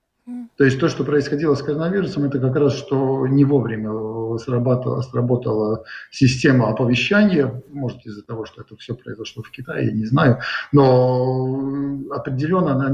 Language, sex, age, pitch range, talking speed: Russian, male, 50-69, 125-145 Hz, 145 wpm